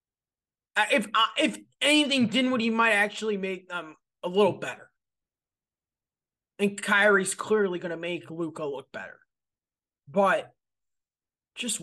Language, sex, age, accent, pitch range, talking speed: English, male, 30-49, American, 195-240 Hz, 115 wpm